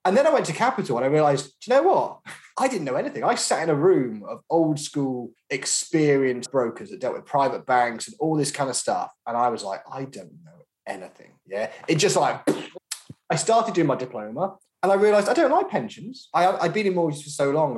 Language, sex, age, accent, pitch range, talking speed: English, male, 20-39, British, 125-180 Hz, 230 wpm